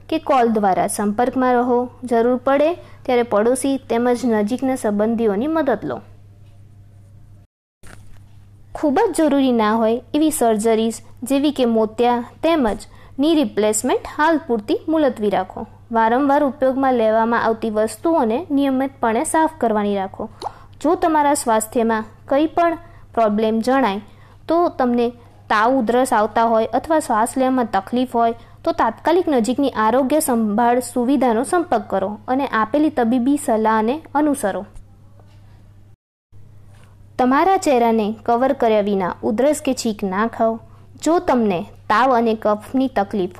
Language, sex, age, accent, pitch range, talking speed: Gujarati, female, 20-39, native, 210-275 Hz, 95 wpm